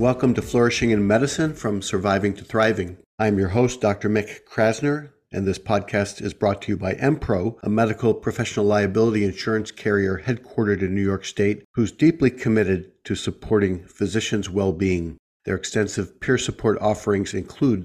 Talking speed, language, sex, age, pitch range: 160 wpm, English, male, 50-69, 100-115 Hz